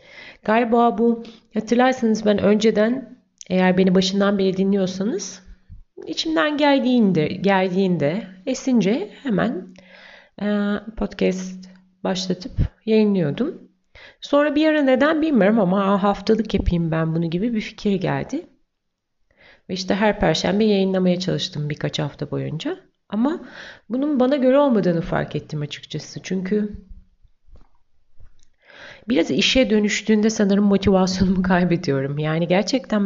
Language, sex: Turkish, female